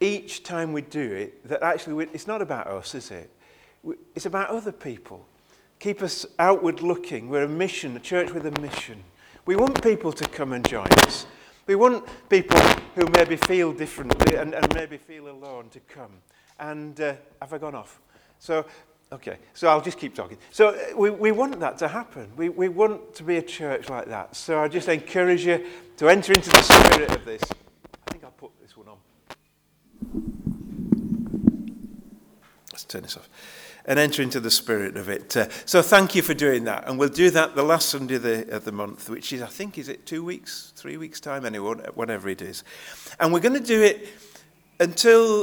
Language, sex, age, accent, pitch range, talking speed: English, male, 40-59, British, 145-200 Hz, 205 wpm